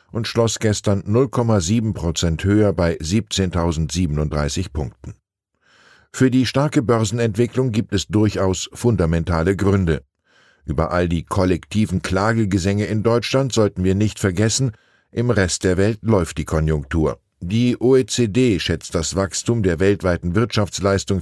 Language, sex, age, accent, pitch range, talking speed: German, male, 10-29, German, 85-115 Hz, 125 wpm